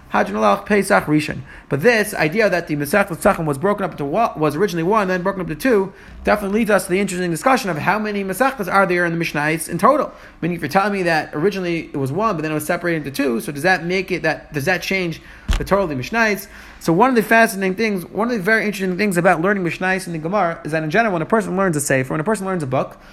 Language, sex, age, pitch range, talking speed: English, male, 30-49, 165-215 Hz, 250 wpm